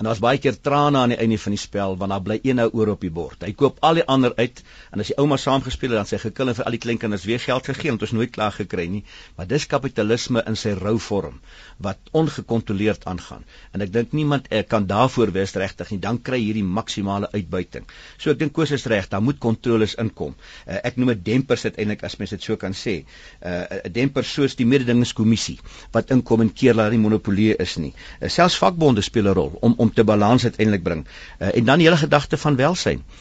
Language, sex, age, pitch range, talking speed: Dutch, male, 50-69, 105-130 Hz, 240 wpm